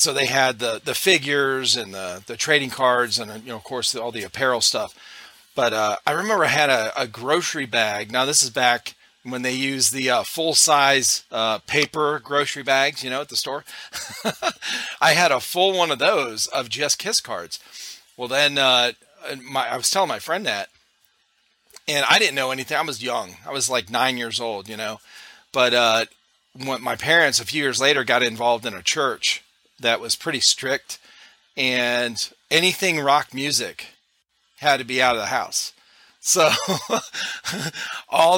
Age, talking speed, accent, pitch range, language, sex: 40-59, 185 wpm, American, 120-145 Hz, English, male